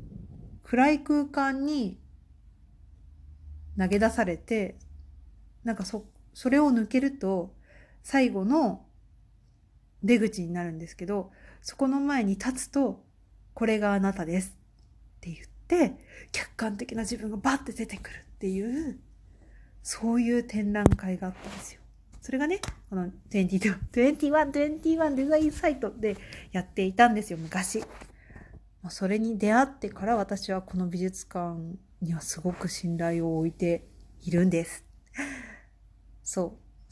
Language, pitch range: Japanese, 180-250 Hz